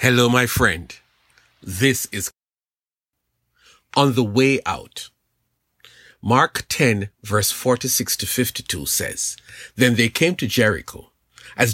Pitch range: 115-175 Hz